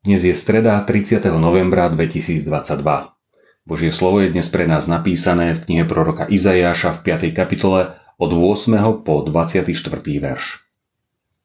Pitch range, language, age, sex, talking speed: 85-100 Hz, Slovak, 40-59, male, 130 wpm